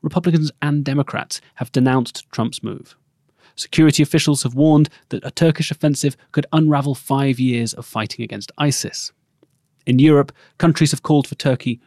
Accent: British